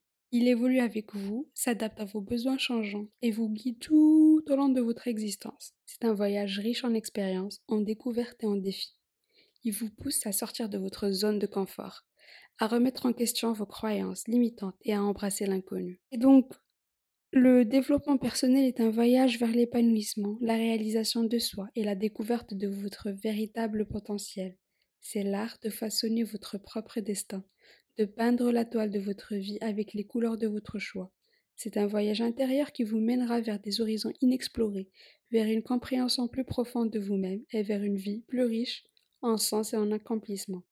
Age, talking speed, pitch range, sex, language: 20-39, 175 wpm, 205-245 Hz, female, French